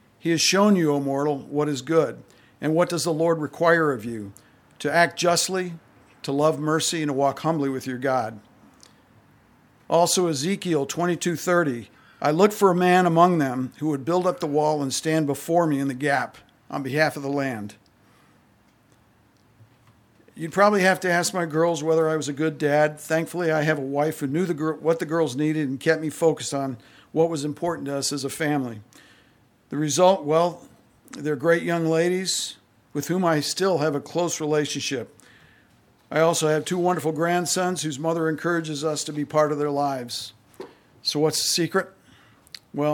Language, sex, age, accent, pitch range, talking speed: English, male, 50-69, American, 135-165 Hz, 185 wpm